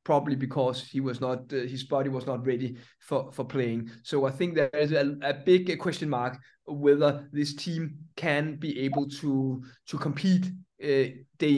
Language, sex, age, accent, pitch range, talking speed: English, male, 20-39, Danish, 140-170 Hz, 180 wpm